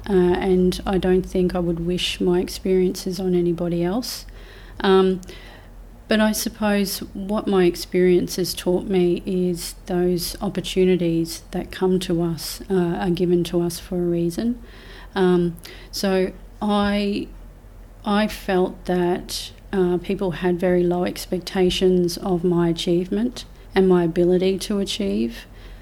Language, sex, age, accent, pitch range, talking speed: English, female, 40-59, Australian, 175-190 Hz, 135 wpm